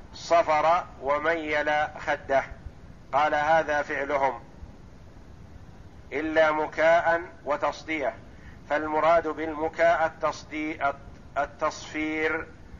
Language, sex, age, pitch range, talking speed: Arabic, male, 50-69, 150-175 Hz, 55 wpm